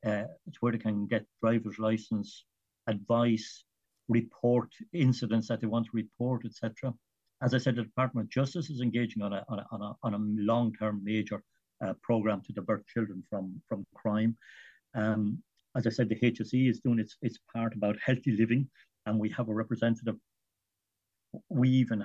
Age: 60-79